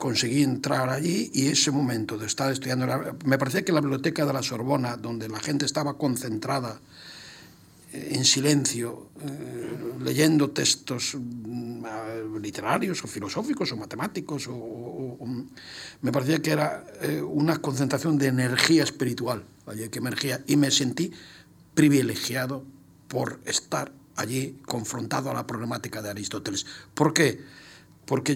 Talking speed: 140 wpm